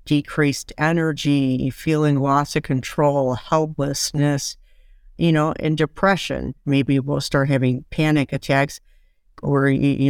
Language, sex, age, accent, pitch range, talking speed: English, female, 50-69, American, 135-155 Hz, 115 wpm